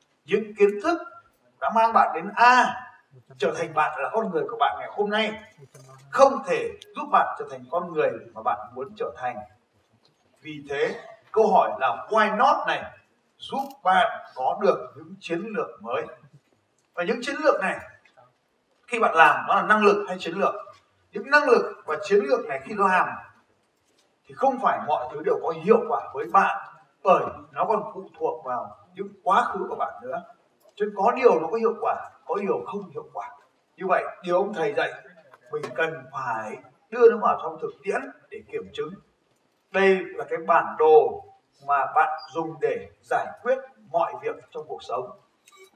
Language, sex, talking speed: Vietnamese, male, 185 wpm